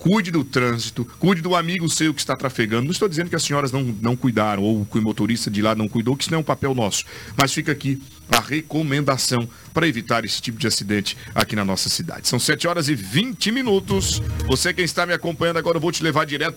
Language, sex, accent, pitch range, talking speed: Portuguese, male, Brazilian, 115-170 Hz, 240 wpm